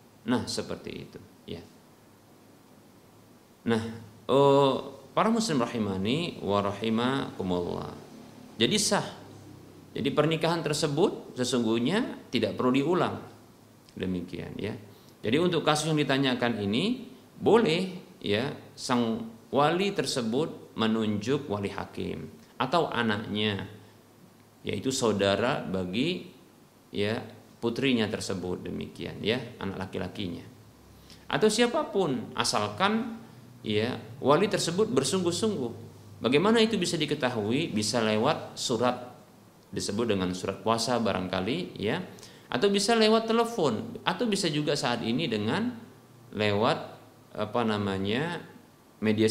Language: Indonesian